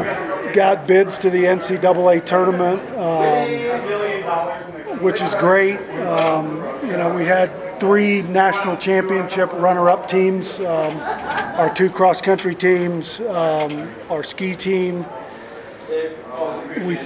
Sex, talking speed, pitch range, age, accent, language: male, 105 wpm, 170-195 Hz, 40-59, American, English